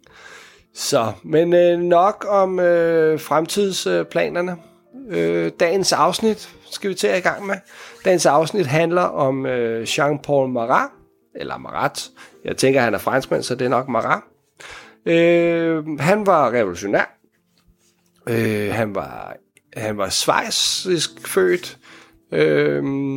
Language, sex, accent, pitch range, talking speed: Danish, male, native, 115-175 Hz, 125 wpm